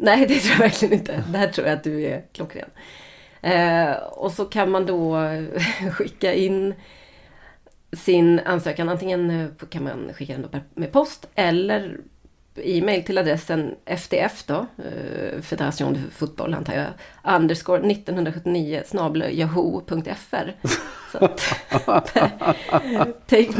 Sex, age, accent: female, 30-49, native